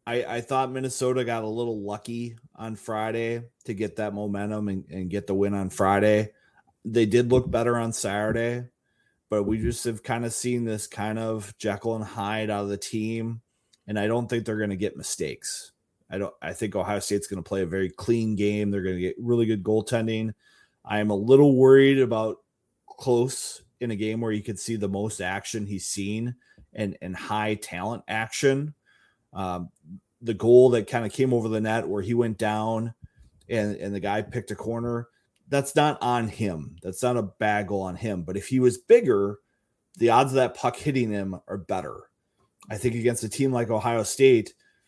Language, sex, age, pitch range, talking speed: English, male, 30-49, 100-120 Hz, 200 wpm